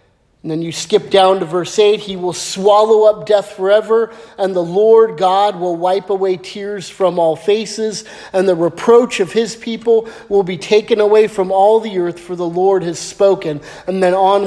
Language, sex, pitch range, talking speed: English, male, 180-225 Hz, 195 wpm